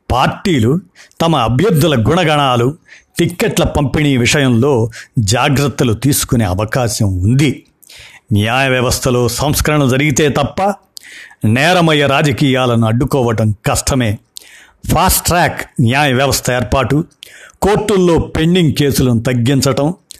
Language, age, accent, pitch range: Telugu, 50-69, native, 120-145 Hz